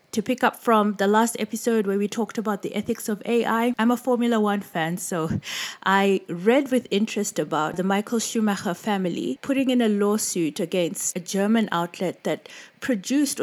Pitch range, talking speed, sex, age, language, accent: 180-230 Hz, 180 wpm, female, 30-49, English, South African